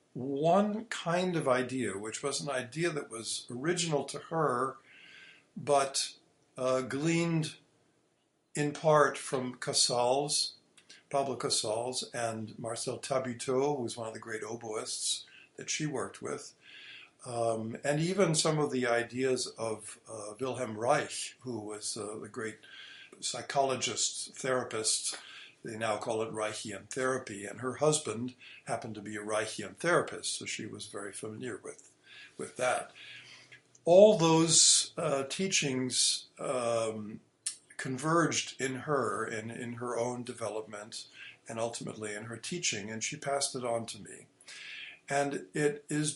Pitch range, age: 115-150 Hz, 60-79